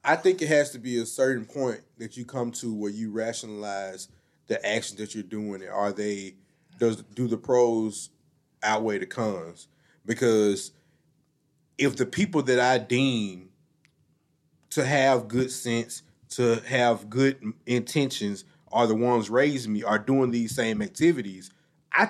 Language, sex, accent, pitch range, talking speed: English, male, American, 115-160 Hz, 155 wpm